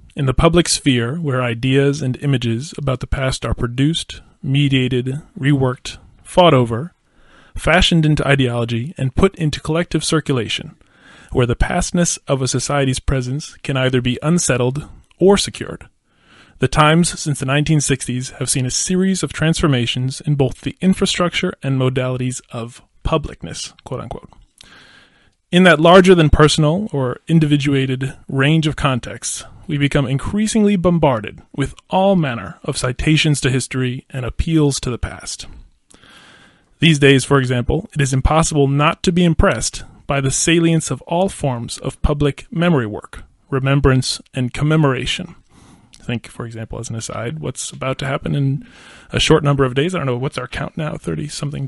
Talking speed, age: 150 wpm, 20-39